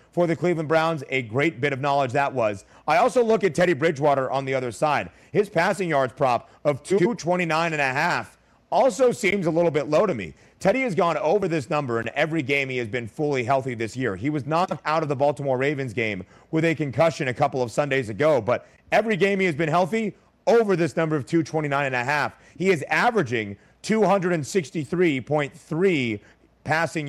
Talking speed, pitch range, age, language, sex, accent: 200 wpm, 135-170 Hz, 30-49, English, male, American